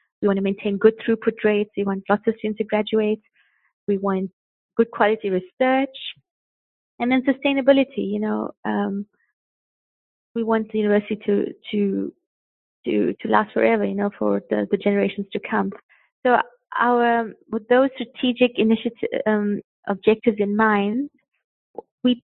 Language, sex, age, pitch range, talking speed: English, female, 20-39, 195-230 Hz, 145 wpm